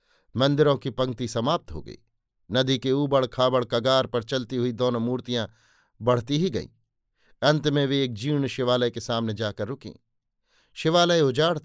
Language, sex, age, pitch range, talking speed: Hindi, male, 50-69, 120-145 Hz, 160 wpm